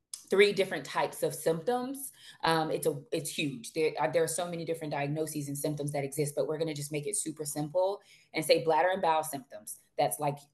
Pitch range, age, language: 150-200 Hz, 20-39, English